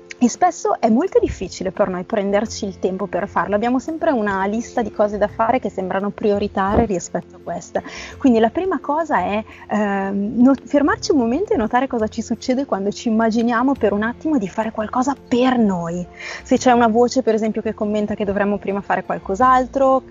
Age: 20-39